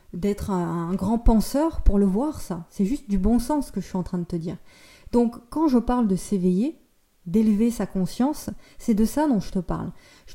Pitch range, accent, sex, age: 185-225 Hz, French, female, 20-39